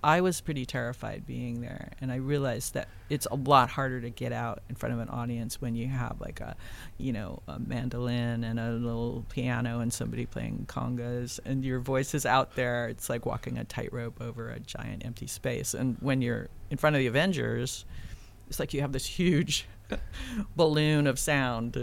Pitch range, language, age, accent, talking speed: 115-140 Hz, English, 40-59, American, 200 wpm